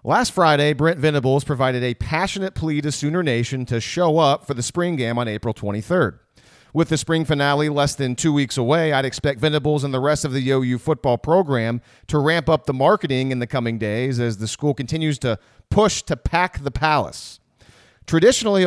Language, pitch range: English, 125-170 Hz